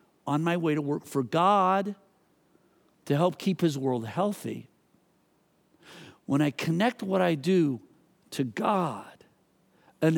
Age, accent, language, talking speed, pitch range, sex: 50-69, American, English, 130 wpm, 145-200 Hz, male